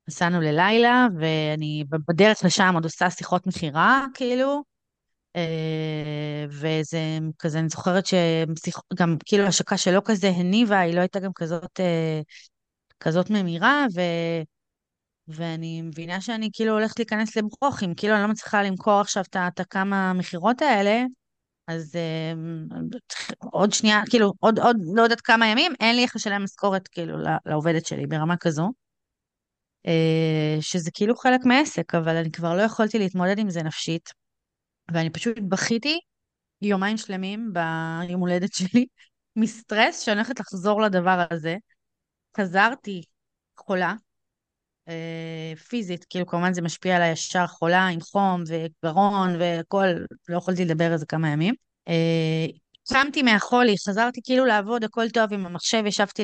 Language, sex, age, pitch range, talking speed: Hebrew, female, 30-49, 165-215 Hz, 130 wpm